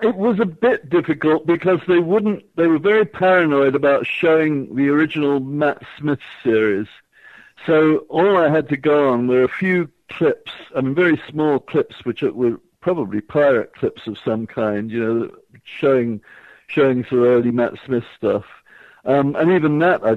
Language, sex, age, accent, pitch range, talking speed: English, male, 60-79, British, 115-150 Hz, 175 wpm